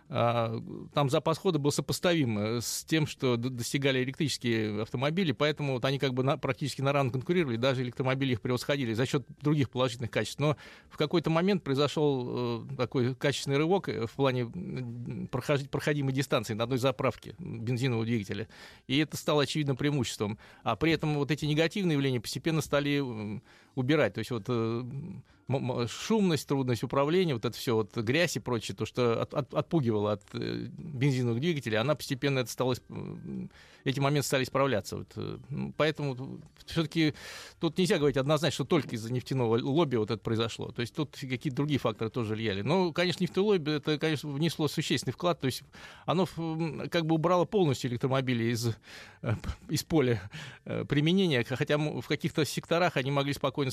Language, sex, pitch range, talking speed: Russian, male, 120-155 Hz, 160 wpm